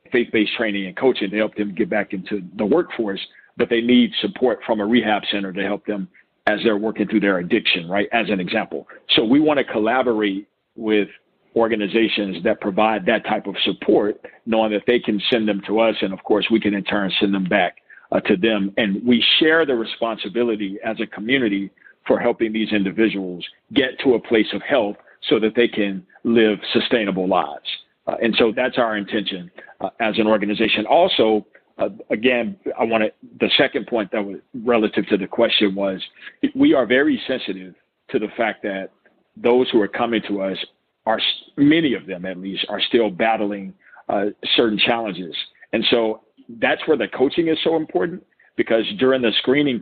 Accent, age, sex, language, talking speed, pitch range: American, 50-69, male, English, 190 wpm, 100-115 Hz